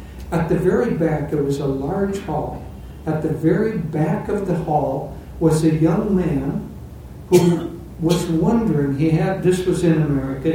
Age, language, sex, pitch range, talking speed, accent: 60-79, English, male, 145-180 Hz, 165 wpm, American